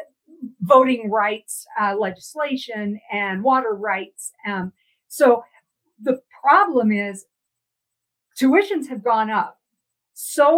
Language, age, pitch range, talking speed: English, 50-69, 205-265 Hz, 95 wpm